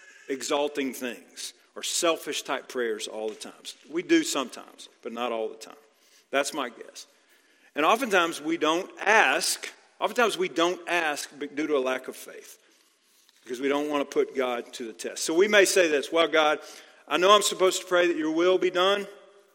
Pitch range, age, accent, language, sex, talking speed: 140-195 Hz, 40-59, American, English, male, 195 wpm